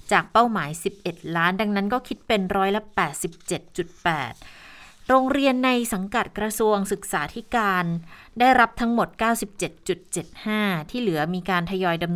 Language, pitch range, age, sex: Thai, 175-230 Hz, 20-39, female